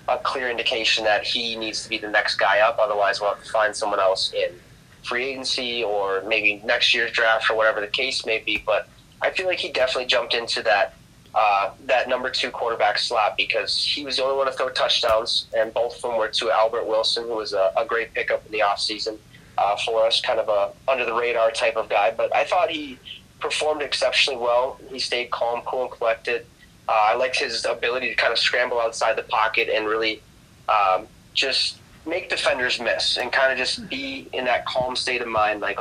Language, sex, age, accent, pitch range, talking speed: English, male, 20-39, American, 110-135 Hz, 220 wpm